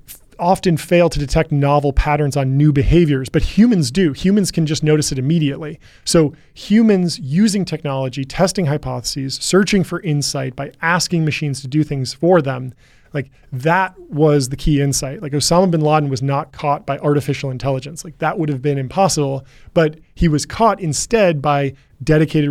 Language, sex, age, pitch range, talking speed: English, male, 20-39, 140-170 Hz, 170 wpm